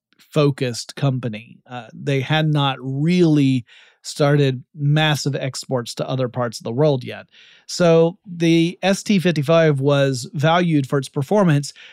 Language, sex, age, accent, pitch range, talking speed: English, male, 30-49, American, 135-165 Hz, 125 wpm